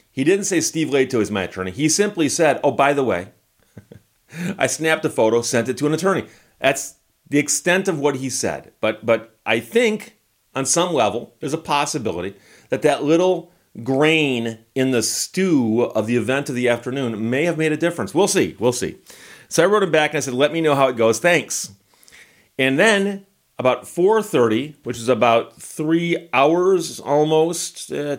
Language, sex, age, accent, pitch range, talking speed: English, male, 40-59, American, 120-165 Hz, 190 wpm